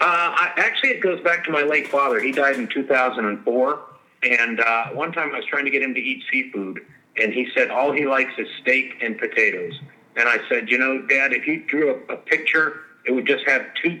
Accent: American